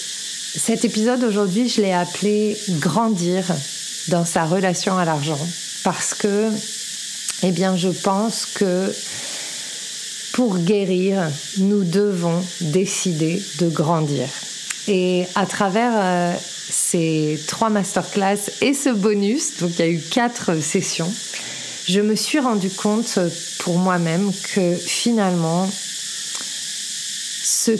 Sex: female